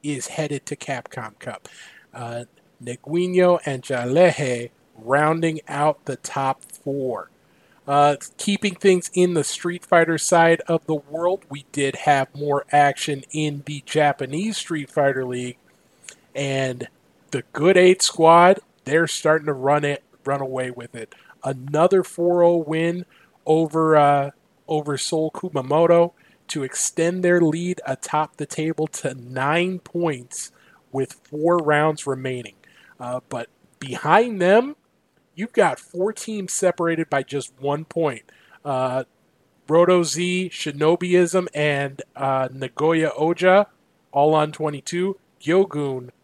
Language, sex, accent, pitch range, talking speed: English, male, American, 140-175 Hz, 125 wpm